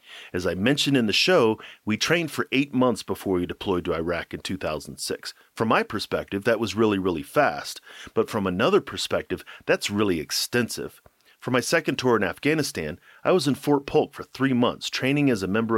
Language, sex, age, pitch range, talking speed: English, male, 40-59, 95-130 Hz, 195 wpm